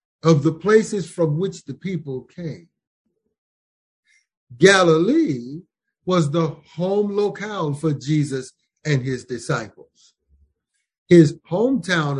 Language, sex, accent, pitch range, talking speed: English, male, American, 140-185 Hz, 100 wpm